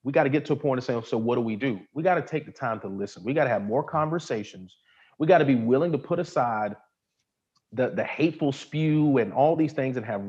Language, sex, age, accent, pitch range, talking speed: English, male, 30-49, American, 110-150 Hz, 270 wpm